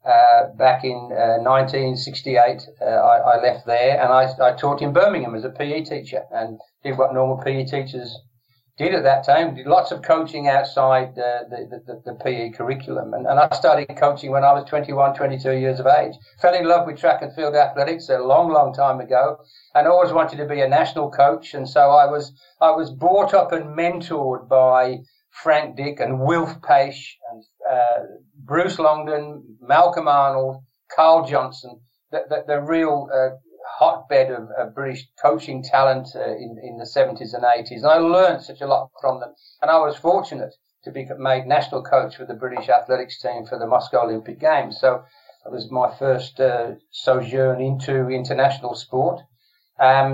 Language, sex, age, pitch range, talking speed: English, male, 50-69, 130-155 Hz, 185 wpm